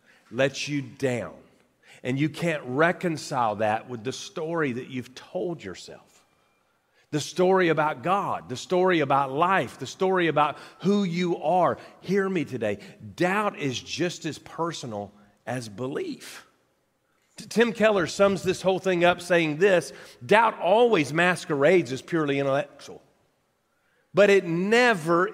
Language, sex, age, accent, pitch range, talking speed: English, male, 40-59, American, 135-190 Hz, 135 wpm